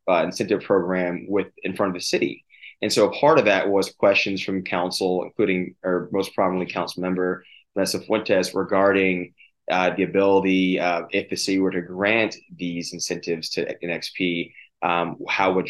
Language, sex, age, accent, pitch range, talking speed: English, male, 20-39, American, 90-100 Hz, 170 wpm